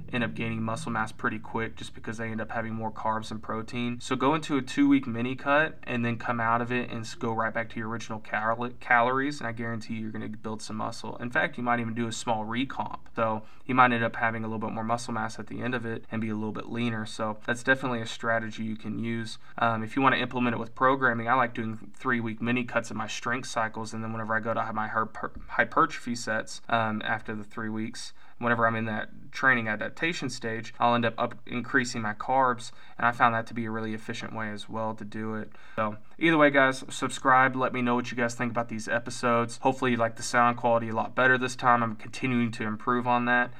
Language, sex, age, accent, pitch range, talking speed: English, male, 20-39, American, 110-125 Hz, 250 wpm